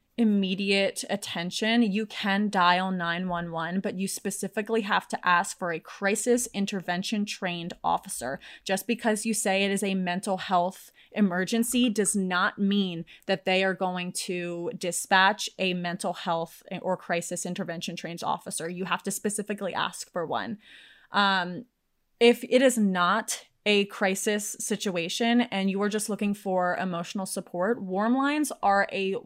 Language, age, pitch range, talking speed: English, 20-39, 180-215 Hz, 150 wpm